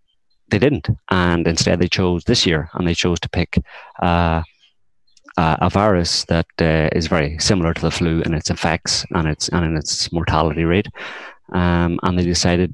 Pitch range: 80-95 Hz